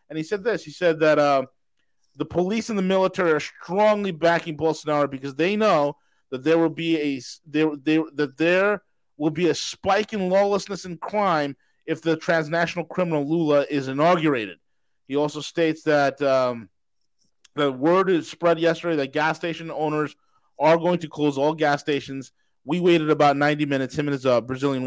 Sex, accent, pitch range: male, American, 140-185 Hz